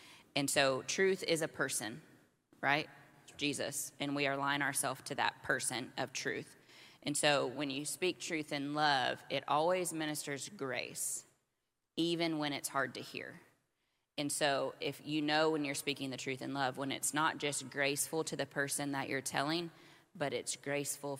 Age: 20-39